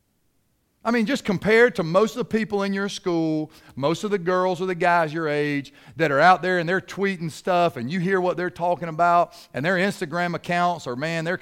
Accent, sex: American, male